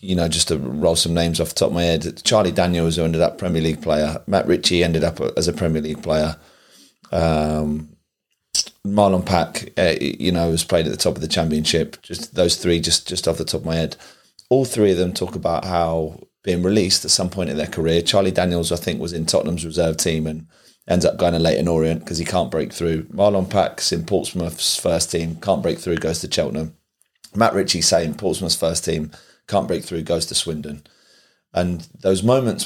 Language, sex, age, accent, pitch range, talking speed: English, male, 30-49, British, 80-100 Hz, 215 wpm